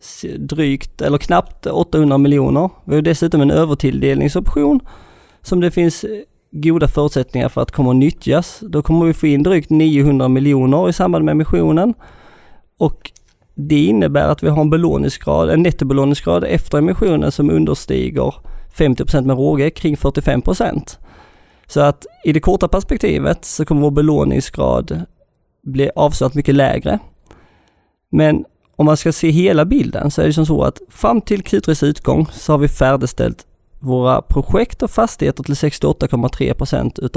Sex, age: male, 20-39